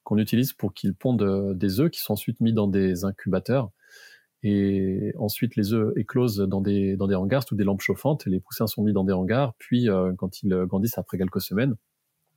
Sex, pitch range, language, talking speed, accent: male, 105-130 Hz, French, 215 wpm, French